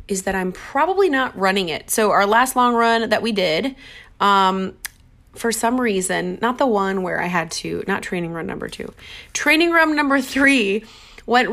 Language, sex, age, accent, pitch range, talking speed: English, female, 30-49, American, 180-235 Hz, 185 wpm